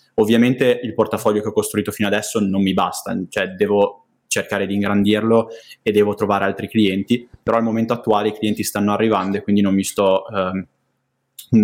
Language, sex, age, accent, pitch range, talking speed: Italian, male, 20-39, native, 100-110 Hz, 180 wpm